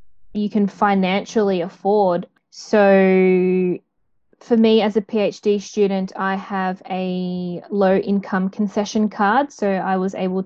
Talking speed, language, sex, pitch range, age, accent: 125 wpm, English, female, 190-215 Hz, 10-29, Australian